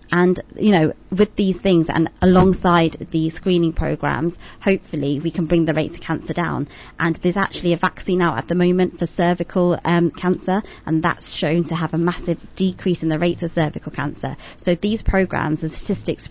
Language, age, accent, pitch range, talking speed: English, 20-39, British, 160-185 Hz, 190 wpm